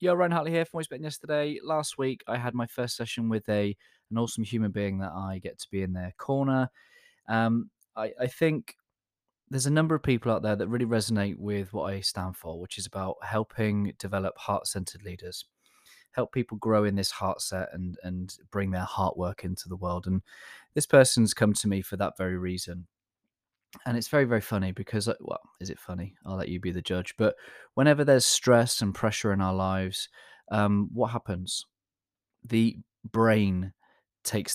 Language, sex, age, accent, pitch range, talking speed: English, male, 20-39, British, 95-120 Hz, 195 wpm